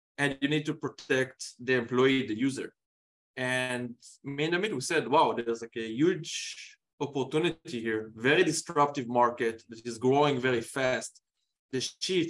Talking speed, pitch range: 155 wpm, 120-145 Hz